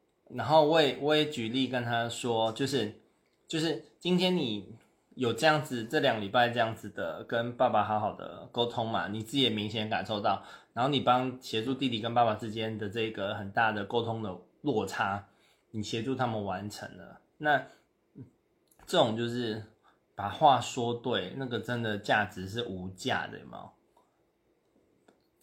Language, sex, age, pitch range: Chinese, male, 20-39, 110-140 Hz